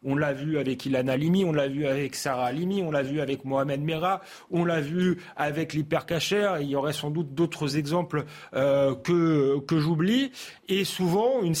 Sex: male